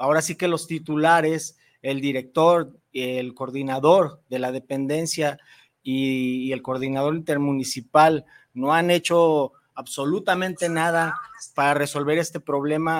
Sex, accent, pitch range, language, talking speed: male, Mexican, 140-170 Hz, Spanish, 115 wpm